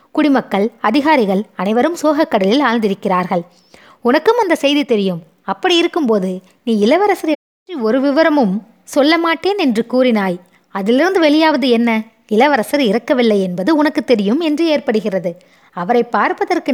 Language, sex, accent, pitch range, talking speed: Tamil, female, native, 200-290 Hz, 115 wpm